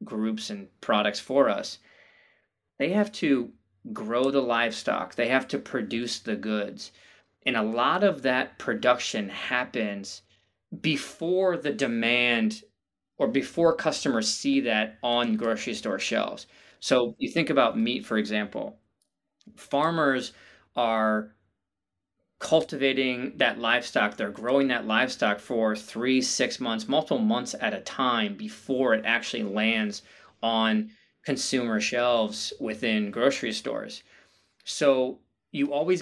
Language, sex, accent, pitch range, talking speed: English, male, American, 110-135 Hz, 125 wpm